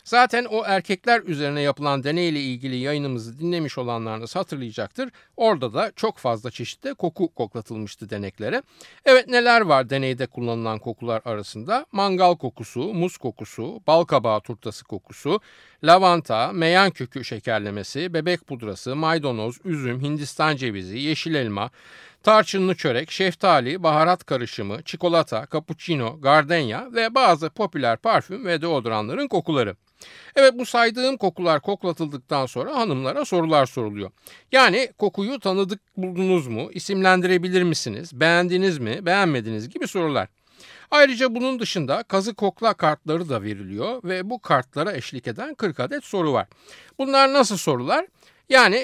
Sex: male